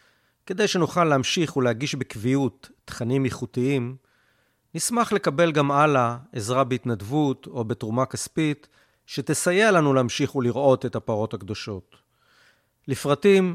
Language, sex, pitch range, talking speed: Hebrew, male, 115-155 Hz, 105 wpm